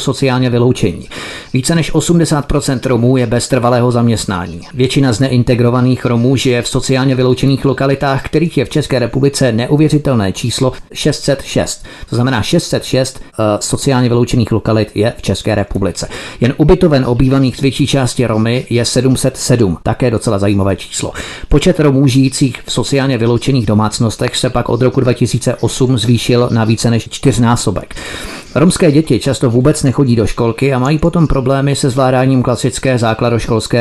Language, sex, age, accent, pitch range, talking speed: Czech, male, 40-59, native, 115-135 Hz, 145 wpm